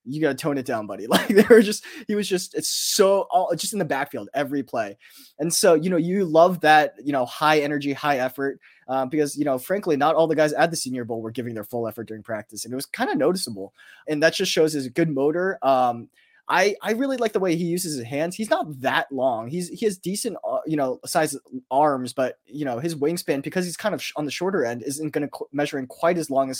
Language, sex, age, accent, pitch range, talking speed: English, male, 20-39, American, 130-180 Hz, 265 wpm